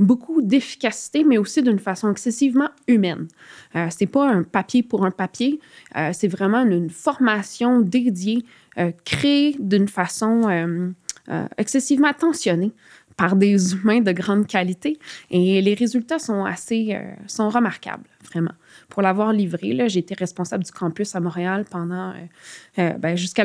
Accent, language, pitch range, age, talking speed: Canadian, French, 185-230 Hz, 20-39, 155 wpm